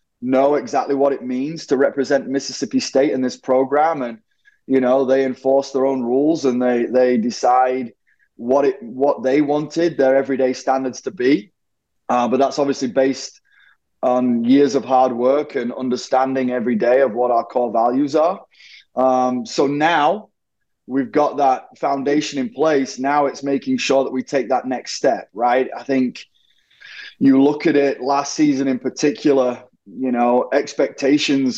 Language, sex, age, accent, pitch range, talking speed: English, male, 20-39, British, 125-140 Hz, 165 wpm